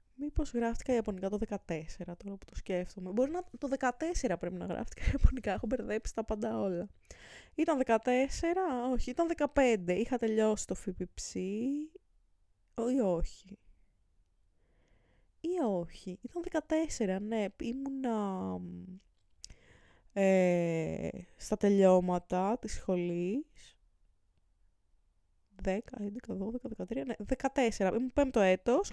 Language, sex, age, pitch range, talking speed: Greek, female, 20-39, 185-285 Hz, 110 wpm